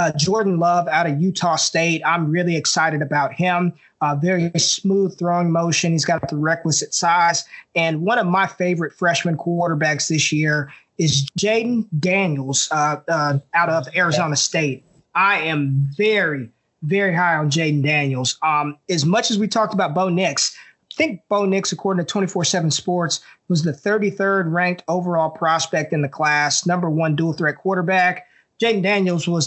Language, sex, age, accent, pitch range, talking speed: English, male, 20-39, American, 155-185 Hz, 165 wpm